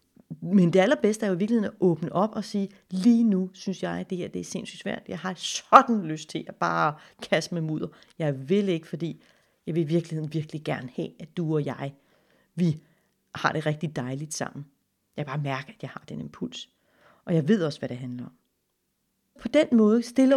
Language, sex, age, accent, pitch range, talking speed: Danish, female, 30-49, native, 160-215 Hz, 225 wpm